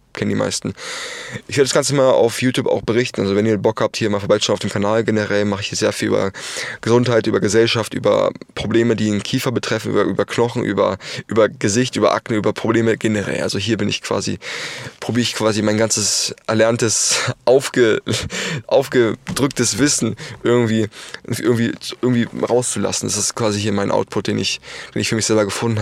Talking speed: 190 wpm